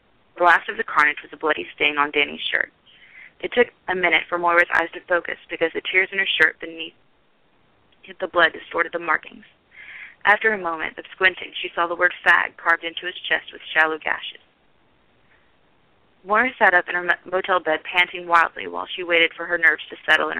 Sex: female